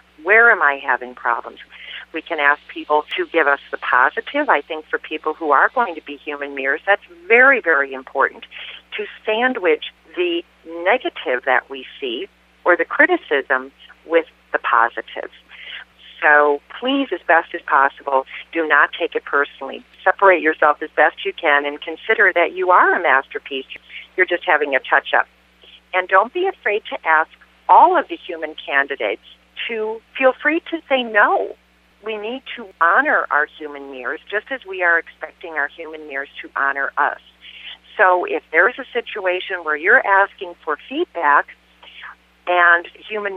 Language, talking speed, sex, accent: English, 165 wpm, female, American